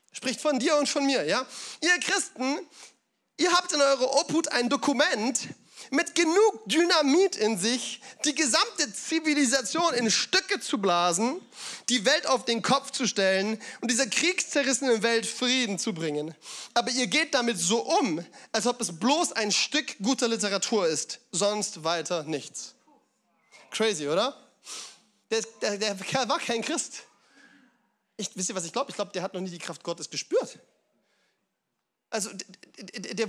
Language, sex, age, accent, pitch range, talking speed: German, male, 30-49, German, 220-290 Hz, 155 wpm